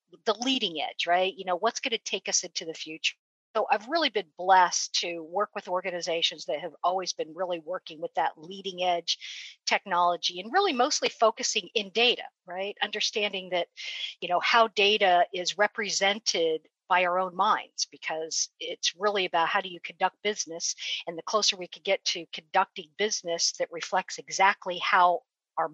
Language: English